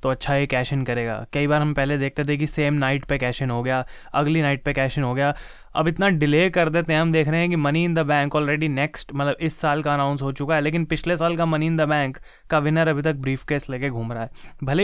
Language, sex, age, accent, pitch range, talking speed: Hindi, male, 20-39, native, 145-170 Hz, 285 wpm